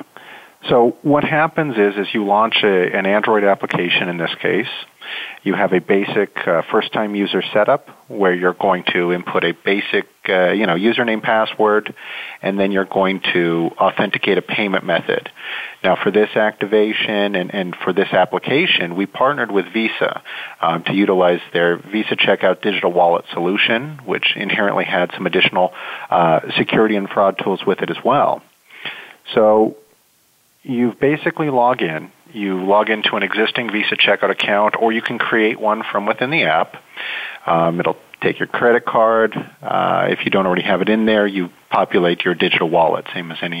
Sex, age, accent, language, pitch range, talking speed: male, 40-59, American, English, 95-115 Hz, 170 wpm